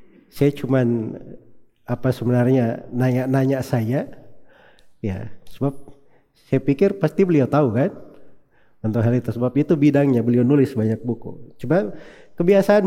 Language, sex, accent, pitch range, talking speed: Indonesian, male, native, 115-150 Hz, 120 wpm